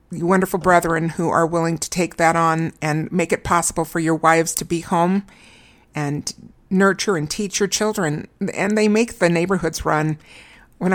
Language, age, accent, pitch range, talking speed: English, 60-79, American, 170-215 Hz, 180 wpm